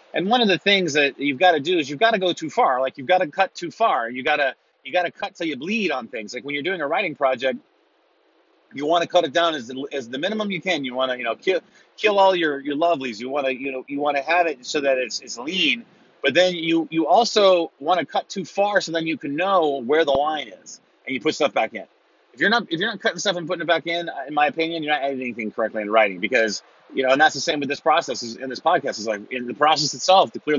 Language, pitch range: English, 135-195 Hz